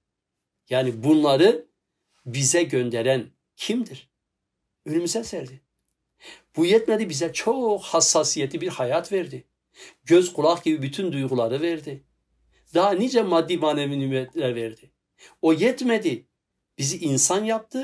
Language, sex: Turkish, male